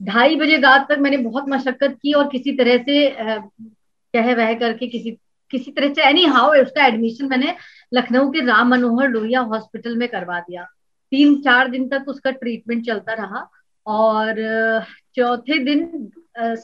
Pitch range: 235-285 Hz